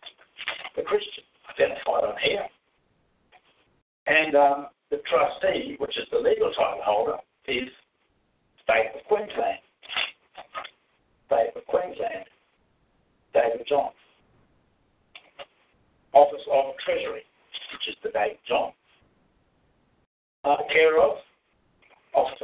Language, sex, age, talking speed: English, male, 60-79, 95 wpm